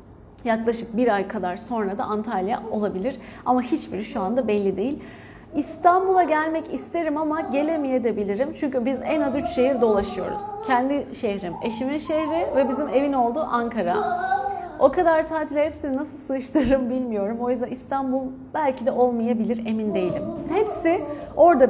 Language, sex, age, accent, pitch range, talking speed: Turkish, female, 30-49, native, 225-305 Hz, 150 wpm